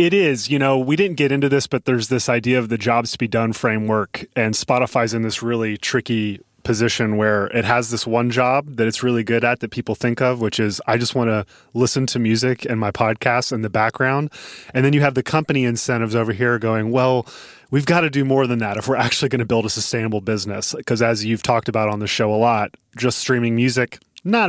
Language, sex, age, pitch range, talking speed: English, male, 30-49, 110-130 Hz, 240 wpm